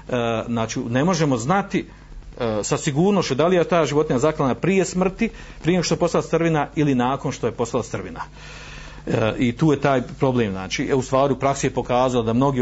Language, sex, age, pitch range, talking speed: Croatian, male, 40-59, 115-150 Hz, 175 wpm